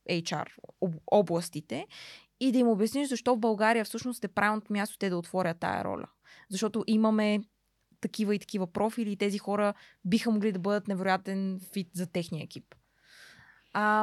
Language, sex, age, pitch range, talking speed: Bulgarian, female, 20-39, 180-215 Hz, 160 wpm